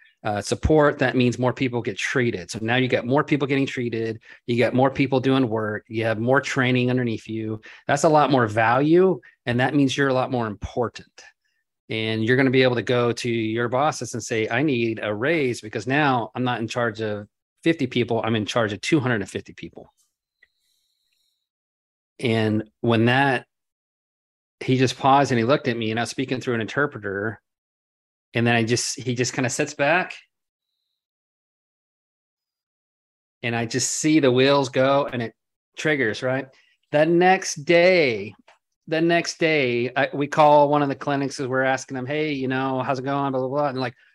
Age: 30-49